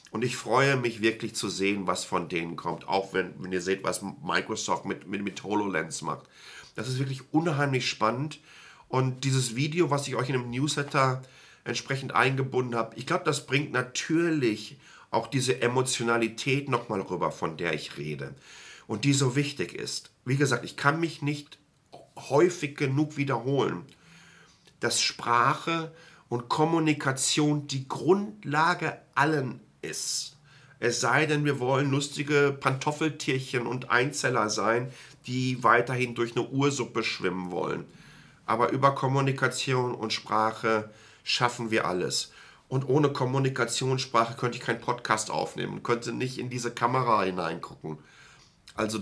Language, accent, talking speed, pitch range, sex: German, German, 140 wpm, 115-140 Hz, male